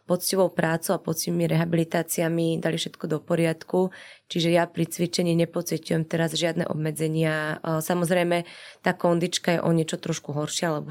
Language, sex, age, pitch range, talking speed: Slovak, female, 20-39, 155-170 Hz, 150 wpm